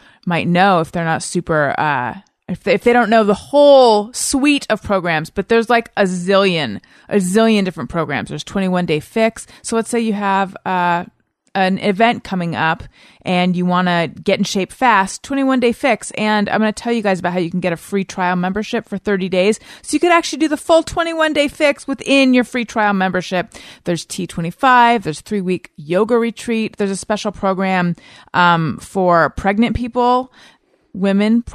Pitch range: 180-235 Hz